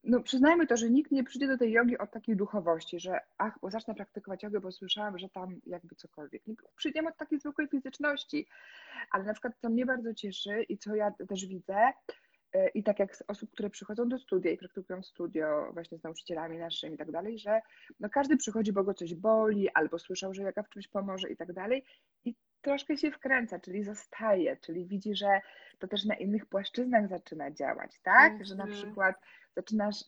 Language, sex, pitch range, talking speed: Polish, female, 195-260 Hz, 205 wpm